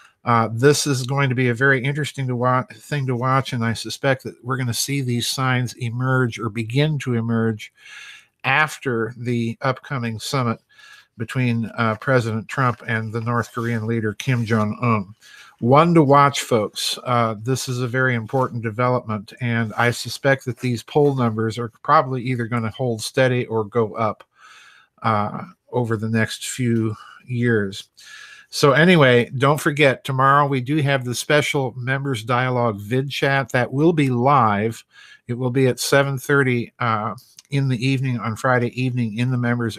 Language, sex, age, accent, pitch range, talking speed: English, male, 50-69, American, 115-135 Hz, 165 wpm